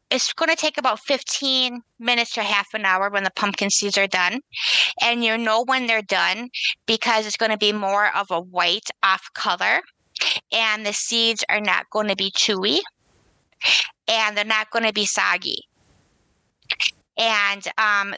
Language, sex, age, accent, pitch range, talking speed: English, female, 20-39, American, 195-230 Hz, 170 wpm